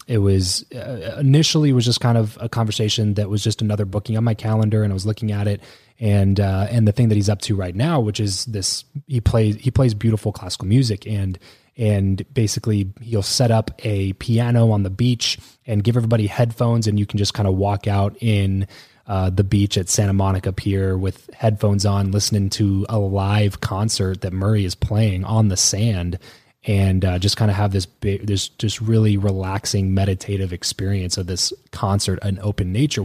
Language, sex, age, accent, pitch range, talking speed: English, male, 20-39, American, 95-115 Hz, 205 wpm